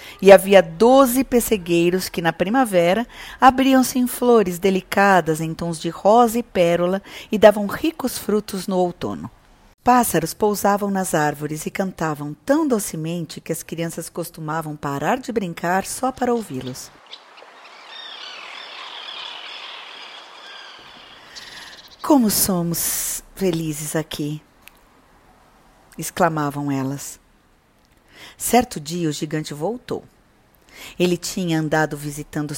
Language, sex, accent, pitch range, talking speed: Portuguese, female, Brazilian, 160-220 Hz, 105 wpm